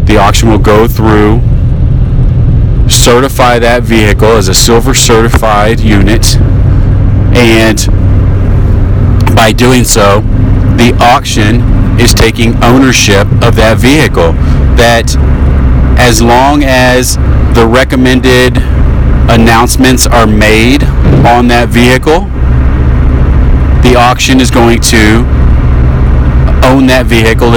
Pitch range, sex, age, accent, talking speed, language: 95-125 Hz, male, 40-59, American, 100 wpm, English